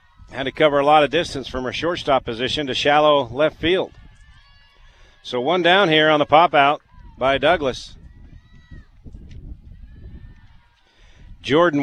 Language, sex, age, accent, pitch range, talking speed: English, male, 50-69, American, 120-160 Hz, 125 wpm